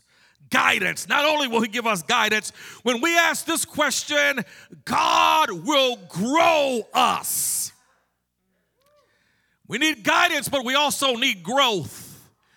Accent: American